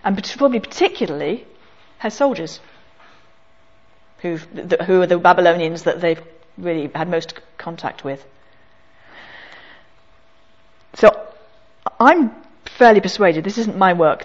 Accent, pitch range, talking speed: British, 160-225 Hz, 115 wpm